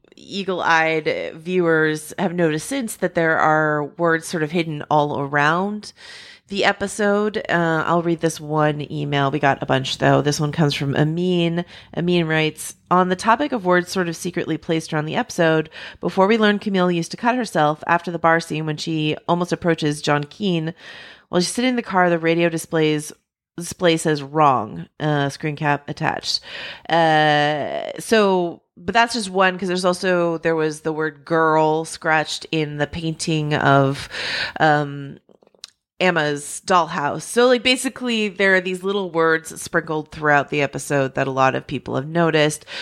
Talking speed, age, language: 170 wpm, 30-49, English